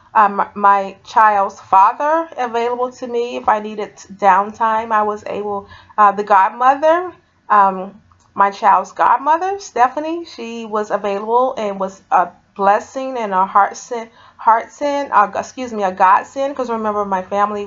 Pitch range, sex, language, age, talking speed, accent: 190-230 Hz, female, English, 30-49, 145 wpm, American